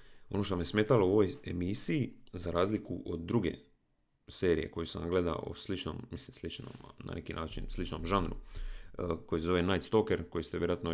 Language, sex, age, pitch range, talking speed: Croatian, male, 40-59, 85-105 Hz, 170 wpm